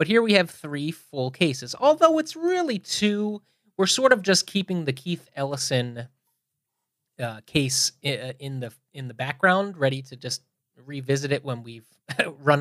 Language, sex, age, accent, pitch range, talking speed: English, male, 30-49, American, 130-170 Hz, 165 wpm